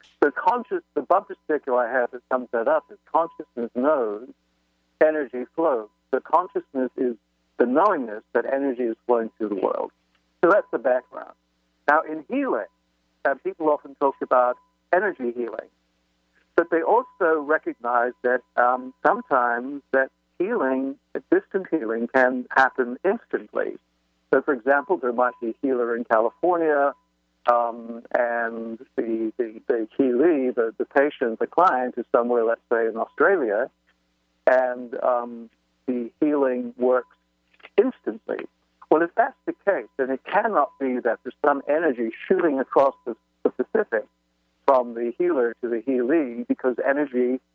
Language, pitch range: English, 115-155 Hz